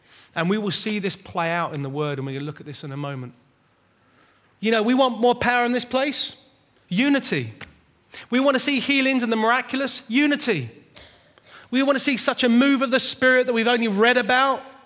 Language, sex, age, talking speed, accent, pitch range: English, male, 30-49, 220 wpm, British, 155-235 Hz